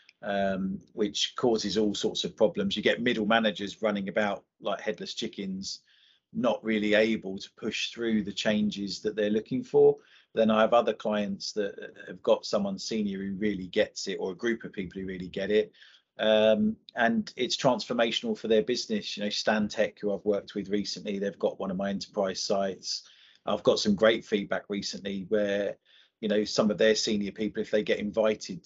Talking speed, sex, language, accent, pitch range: 190 wpm, male, English, British, 100-110 Hz